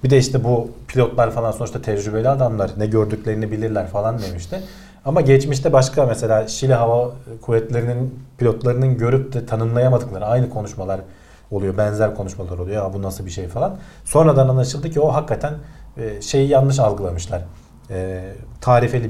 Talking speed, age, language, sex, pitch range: 145 wpm, 40-59, Turkish, male, 105-135 Hz